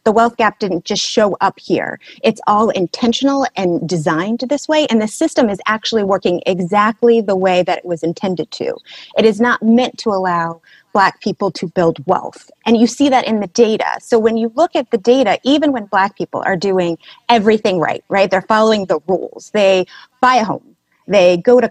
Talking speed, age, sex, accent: 205 wpm, 30-49, female, American